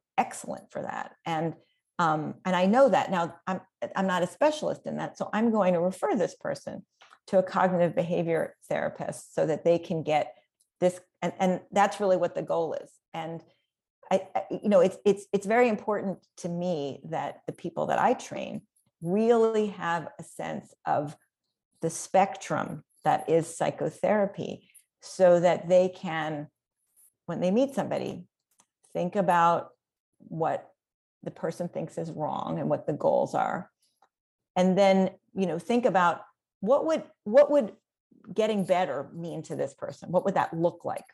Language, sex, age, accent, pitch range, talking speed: English, female, 40-59, American, 170-210 Hz, 165 wpm